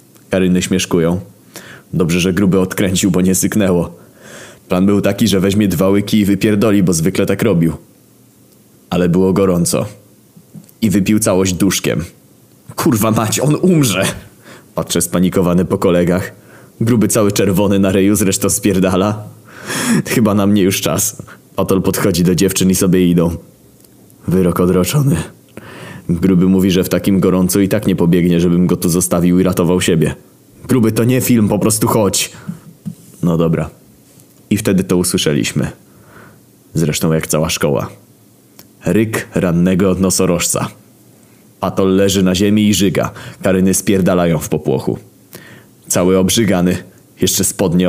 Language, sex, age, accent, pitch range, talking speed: Polish, male, 20-39, native, 90-110 Hz, 140 wpm